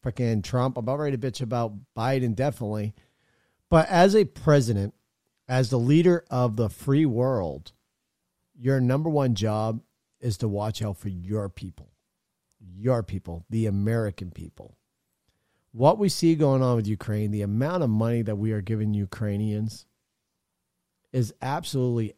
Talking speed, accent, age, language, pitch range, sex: 150 wpm, American, 50-69, English, 110-155 Hz, male